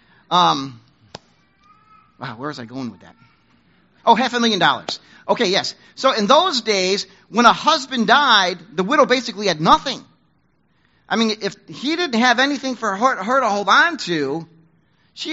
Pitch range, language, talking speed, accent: 185-270 Hz, English, 170 wpm, American